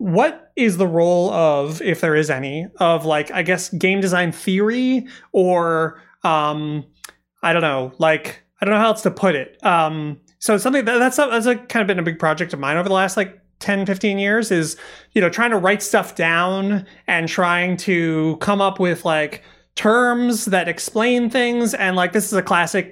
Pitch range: 170-215 Hz